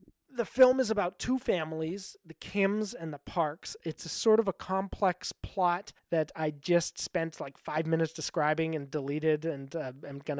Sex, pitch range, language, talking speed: male, 145-175 Hz, English, 185 wpm